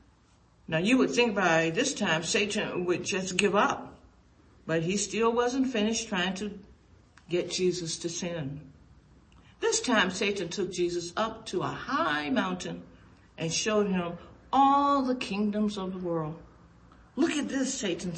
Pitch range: 170-240 Hz